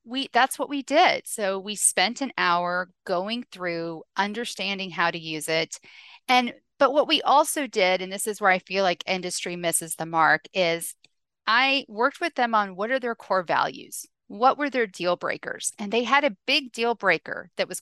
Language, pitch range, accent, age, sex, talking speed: English, 175-230 Hz, American, 40-59, female, 200 wpm